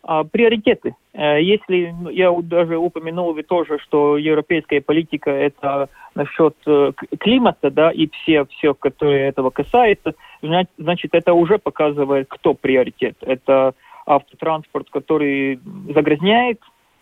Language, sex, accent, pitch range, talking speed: Russian, male, native, 145-190 Hz, 105 wpm